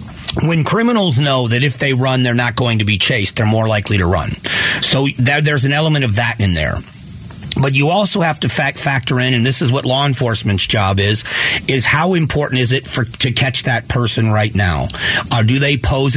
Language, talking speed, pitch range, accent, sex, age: English, 215 wpm, 110-135 Hz, American, male, 40-59